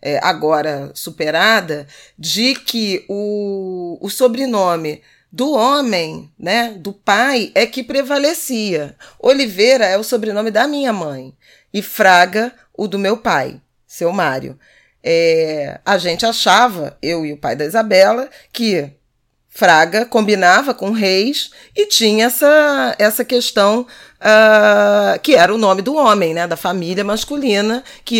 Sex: female